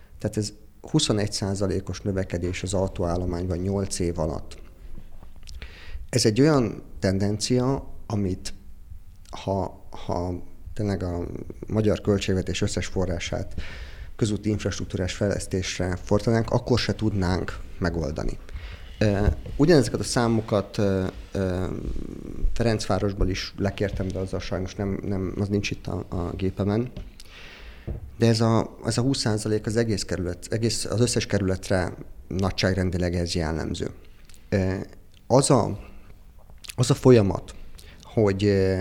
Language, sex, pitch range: Hungarian, male, 90-105 Hz